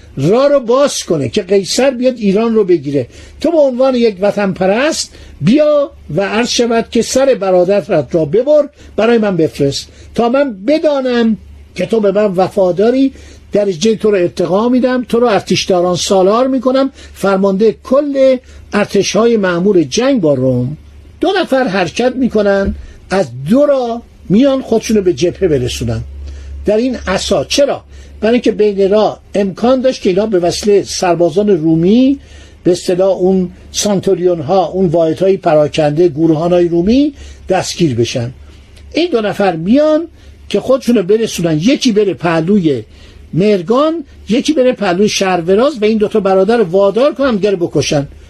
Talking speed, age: 150 wpm, 60-79